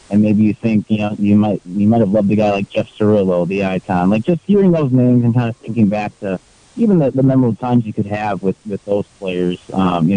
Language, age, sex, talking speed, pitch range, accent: English, 30-49, male, 260 wpm, 100-120 Hz, American